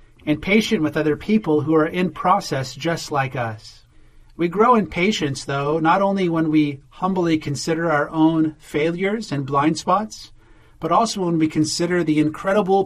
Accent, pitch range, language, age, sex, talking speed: American, 135-165 Hz, English, 40-59, male, 170 wpm